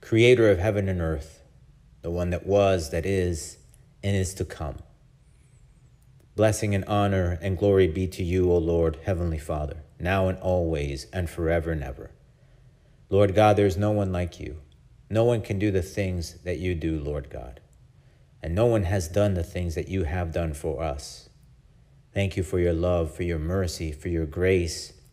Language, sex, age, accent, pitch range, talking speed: English, male, 40-59, American, 85-100 Hz, 180 wpm